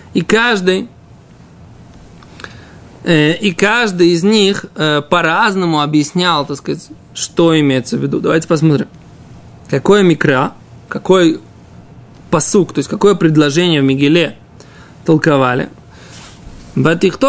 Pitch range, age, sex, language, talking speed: 150-205 Hz, 20-39, male, Russian, 105 wpm